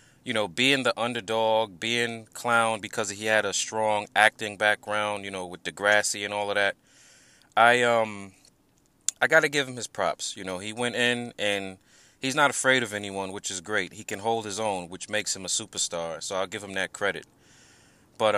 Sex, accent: male, American